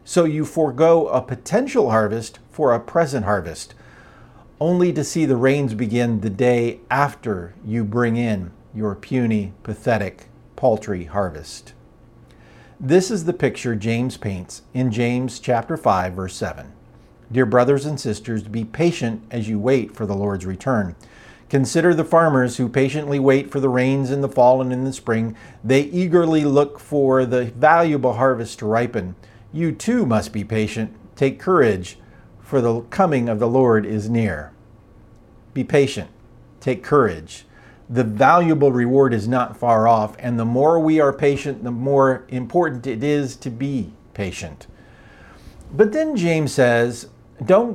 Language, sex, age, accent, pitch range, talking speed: English, male, 50-69, American, 110-140 Hz, 155 wpm